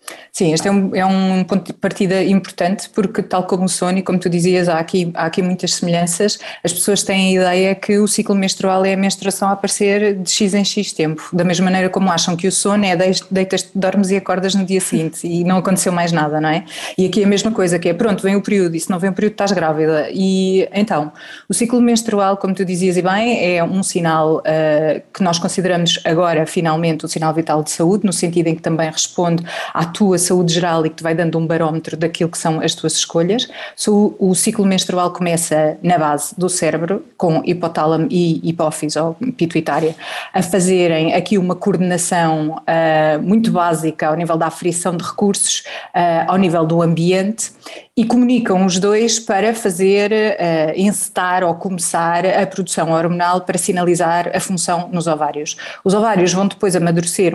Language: Portuguese